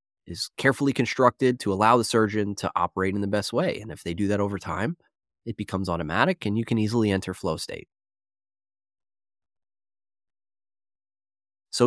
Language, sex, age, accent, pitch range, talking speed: English, male, 20-39, American, 100-150 Hz, 155 wpm